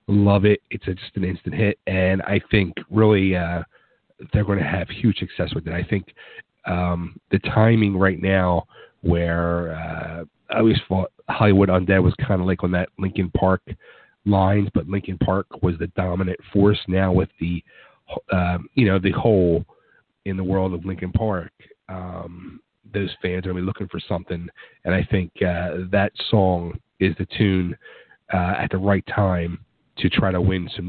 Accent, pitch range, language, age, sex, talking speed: American, 90-105 Hz, English, 40-59, male, 185 wpm